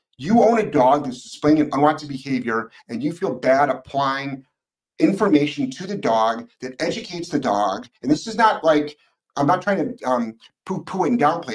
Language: English